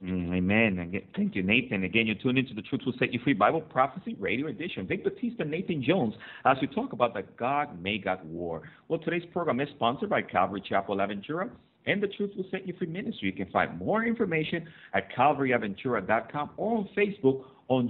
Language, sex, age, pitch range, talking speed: English, male, 50-69, 110-160 Hz, 195 wpm